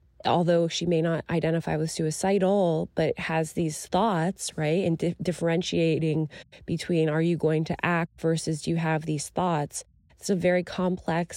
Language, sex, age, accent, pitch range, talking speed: English, female, 20-39, American, 155-180 Hz, 160 wpm